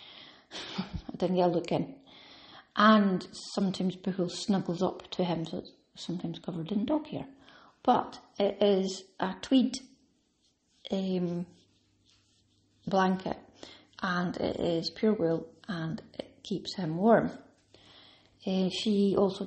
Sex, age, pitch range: female, 30-49, 175-210 Hz